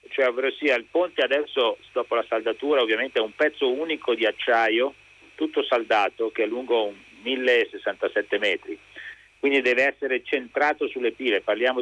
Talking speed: 145 wpm